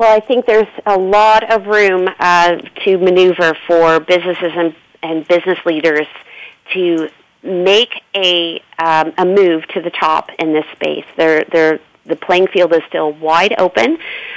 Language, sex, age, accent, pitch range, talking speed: English, female, 40-59, American, 170-205 Hz, 150 wpm